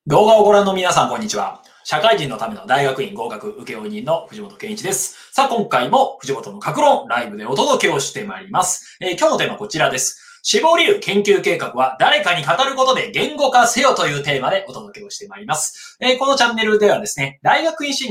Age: 20-39